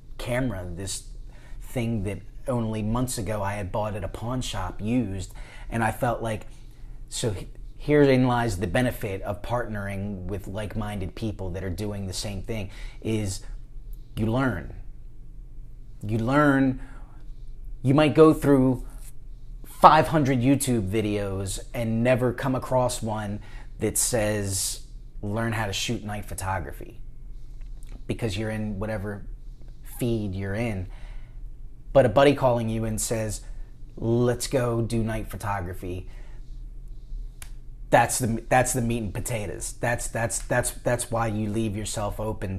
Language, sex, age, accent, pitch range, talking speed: English, male, 30-49, American, 105-125 Hz, 135 wpm